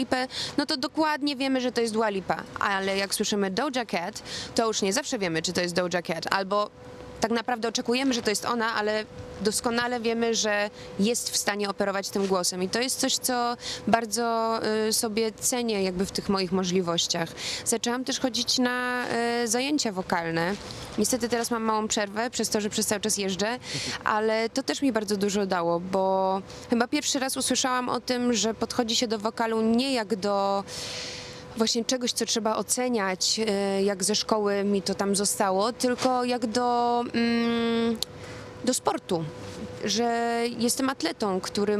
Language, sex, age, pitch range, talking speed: Polish, female, 20-39, 200-245 Hz, 165 wpm